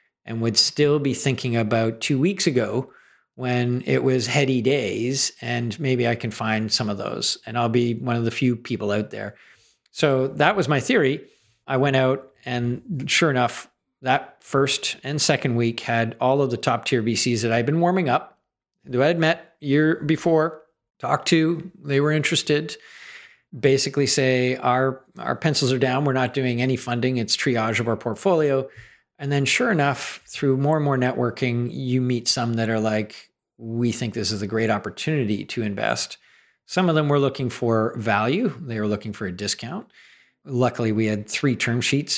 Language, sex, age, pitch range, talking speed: English, male, 50-69, 115-140 Hz, 185 wpm